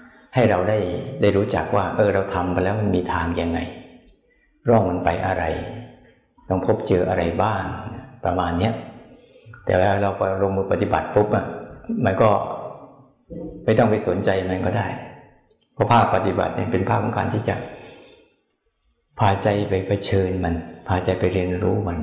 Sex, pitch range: male, 95-115 Hz